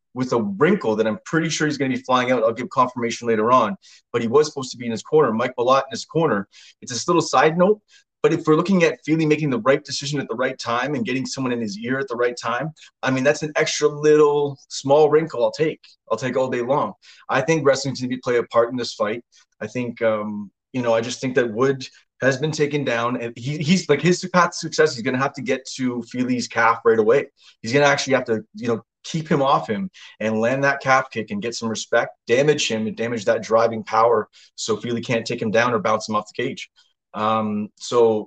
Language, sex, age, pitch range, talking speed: English, male, 20-39, 115-150 Hz, 255 wpm